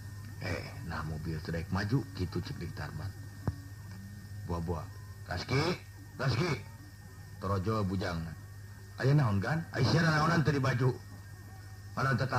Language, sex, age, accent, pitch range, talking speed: Indonesian, male, 50-69, native, 95-115 Hz, 110 wpm